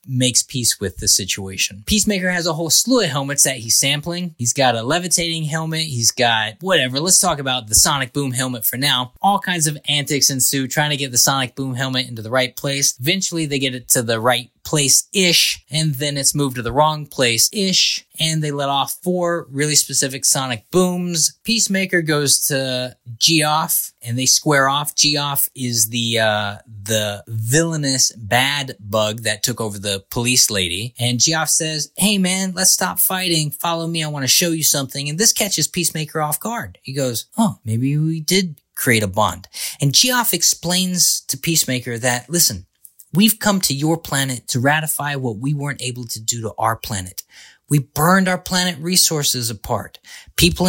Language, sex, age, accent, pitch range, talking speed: English, male, 20-39, American, 120-165 Hz, 185 wpm